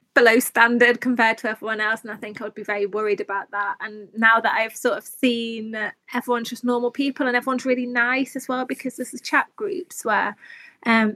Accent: British